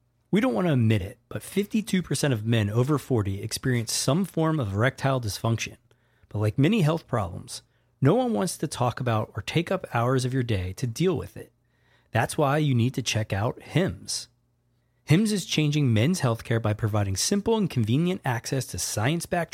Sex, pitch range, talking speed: male, 115-165 Hz, 190 wpm